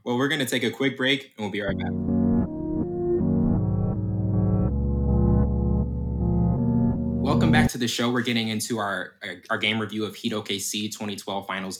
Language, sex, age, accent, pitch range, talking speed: English, male, 20-39, American, 95-110 Hz, 155 wpm